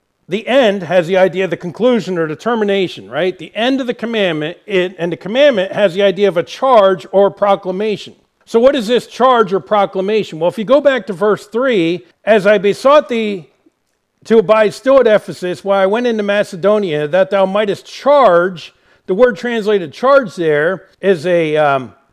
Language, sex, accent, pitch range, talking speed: English, male, American, 180-230 Hz, 190 wpm